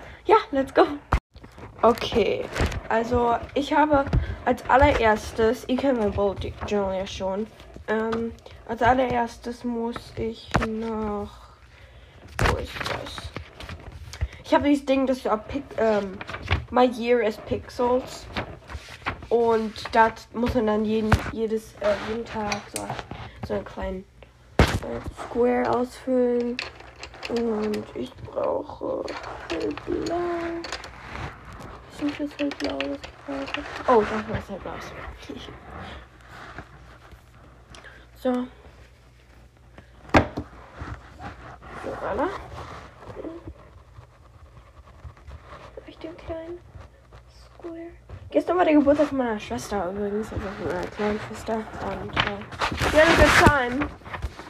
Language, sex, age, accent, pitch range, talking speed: German, female, 10-29, German, 210-280 Hz, 105 wpm